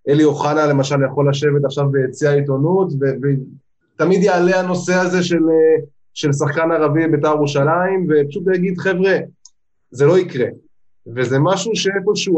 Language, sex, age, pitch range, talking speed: Hebrew, male, 20-39, 140-180 Hz, 135 wpm